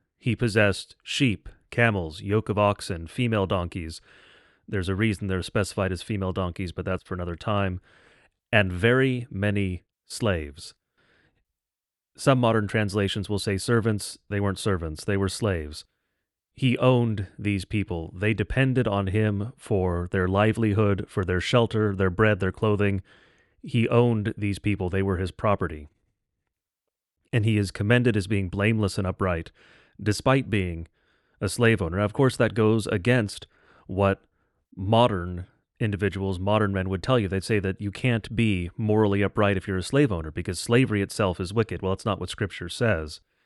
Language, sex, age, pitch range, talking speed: English, male, 30-49, 95-110 Hz, 160 wpm